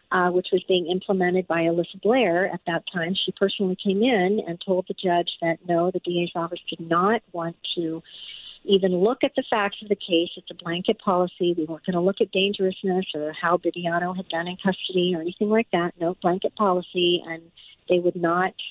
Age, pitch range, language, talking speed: 50-69, 170-200 Hz, English, 210 wpm